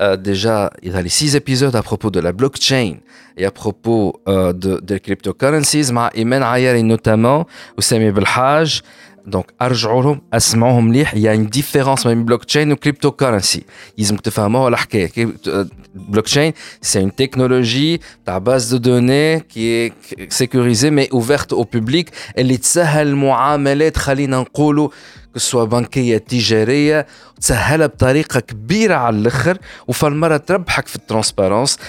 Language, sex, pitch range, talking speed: Arabic, male, 105-140 Hz, 165 wpm